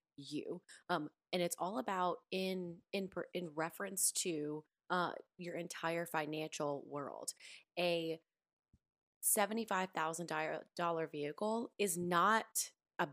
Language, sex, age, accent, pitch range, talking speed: English, female, 20-39, American, 155-180 Hz, 115 wpm